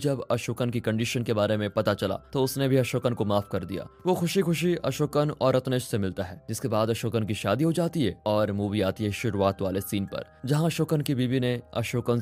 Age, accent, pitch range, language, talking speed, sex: 20-39, native, 105-135 Hz, Hindi, 235 wpm, male